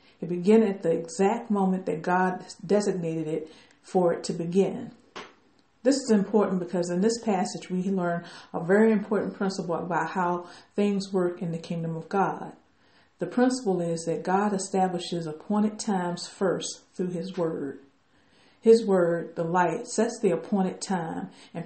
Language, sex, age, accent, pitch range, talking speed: English, female, 50-69, American, 175-215 Hz, 160 wpm